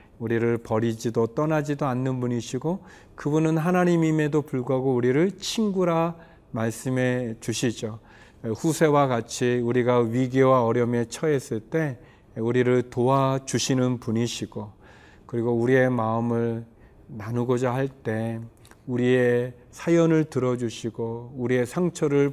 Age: 40-59